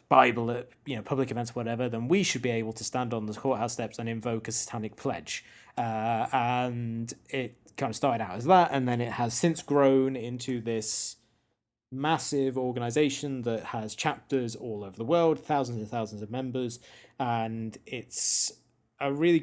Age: 20-39